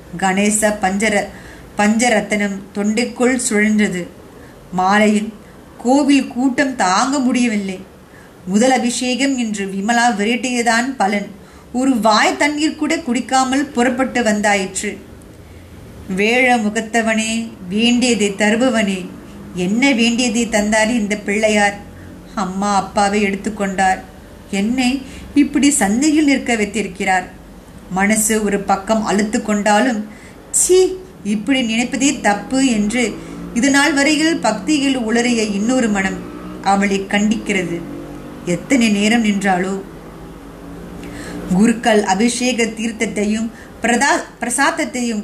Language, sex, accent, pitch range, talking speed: Tamil, female, native, 205-255 Hz, 85 wpm